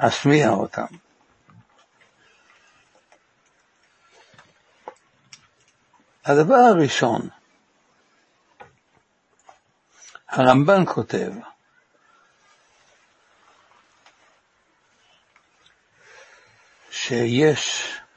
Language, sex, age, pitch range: Hebrew, male, 60-79, 120-170 Hz